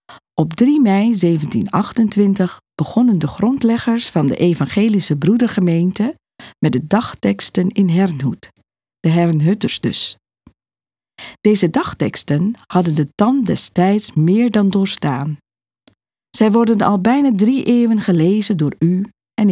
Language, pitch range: Dutch, 150-225 Hz